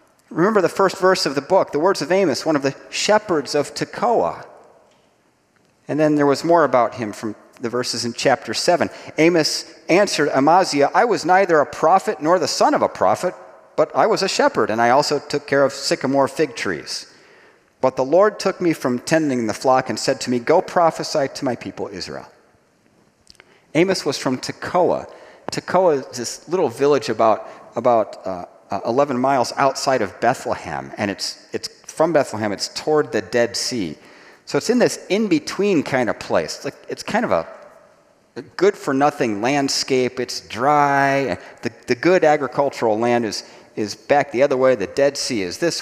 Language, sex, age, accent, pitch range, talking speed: English, male, 40-59, American, 130-170 Hz, 185 wpm